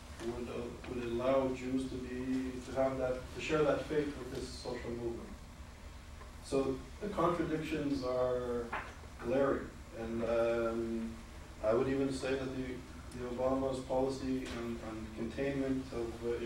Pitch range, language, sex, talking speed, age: 90-135 Hz, English, male, 140 wpm, 40-59